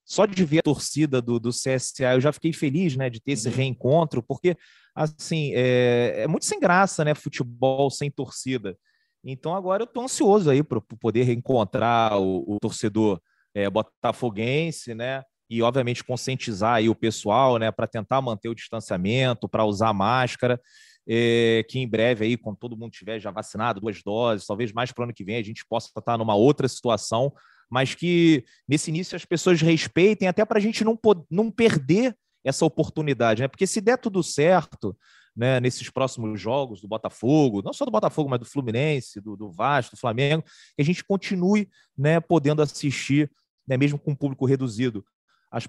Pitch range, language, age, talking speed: 115-155 Hz, Portuguese, 30-49, 185 wpm